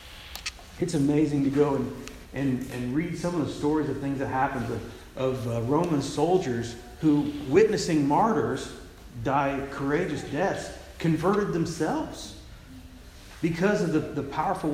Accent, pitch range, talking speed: American, 120-165 Hz, 140 wpm